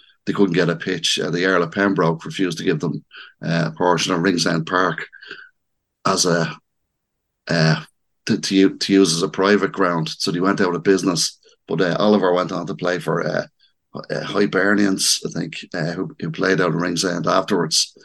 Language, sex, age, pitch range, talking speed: English, male, 30-49, 80-95 Hz, 195 wpm